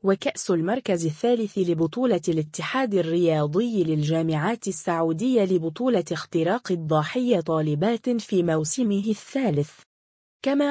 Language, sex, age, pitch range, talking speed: Arabic, female, 20-39, 165-235 Hz, 90 wpm